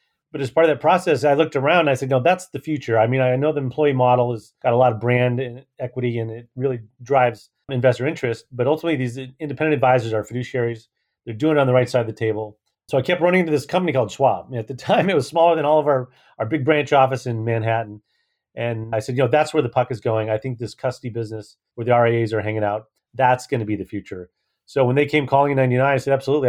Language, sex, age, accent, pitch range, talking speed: English, male, 30-49, American, 115-145 Hz, 265 wpm